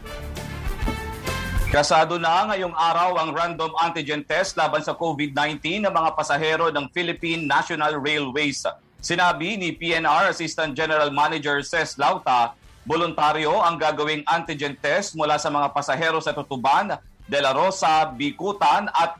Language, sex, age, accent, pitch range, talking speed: English, male, 40-59, Filipino, 145-170 Hz, 130 wpm